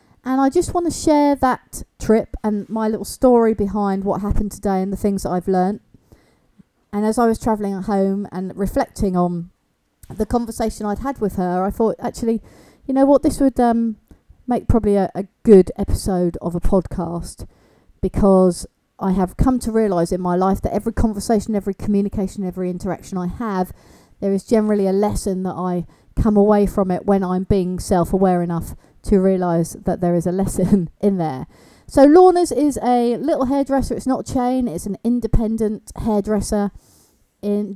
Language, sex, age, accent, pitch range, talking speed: English, female, 40-59, British, 190-225 Hz, 180 wpm